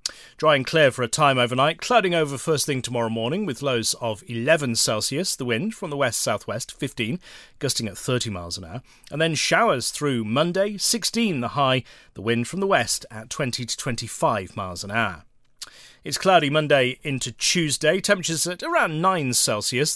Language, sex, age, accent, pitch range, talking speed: English, male, 30-49, British, 115-170 Hz, 180 wpm